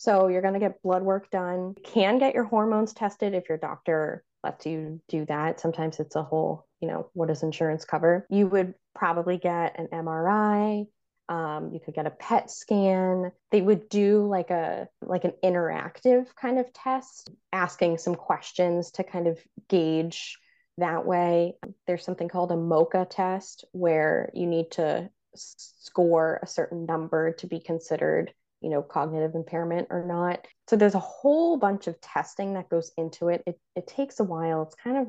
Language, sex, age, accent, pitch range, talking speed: English, female, 20-39, American, 170-210 Hz, 185 wpm